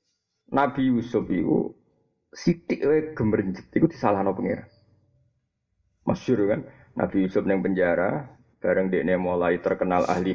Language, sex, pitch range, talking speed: Malay, male, 105-140 Hz, 120 wpm